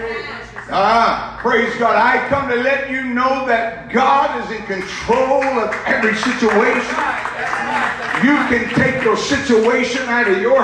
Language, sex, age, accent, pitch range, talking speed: English, male, 50-69, American, 240-315 Hz, 140 wpm